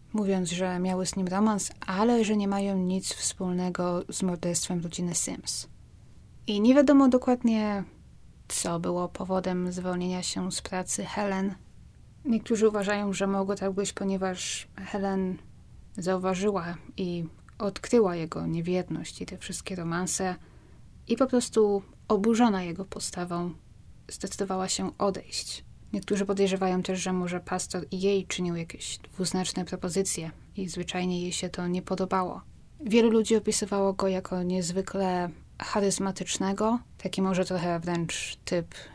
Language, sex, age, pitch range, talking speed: Polish, female, 20-39, 175-195 Hz, 130 wpm